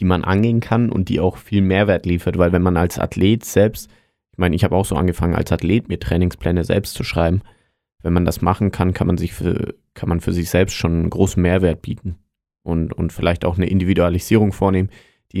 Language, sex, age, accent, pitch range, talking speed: German, male, 30-49, German, 90-105 Hz, 210 wpm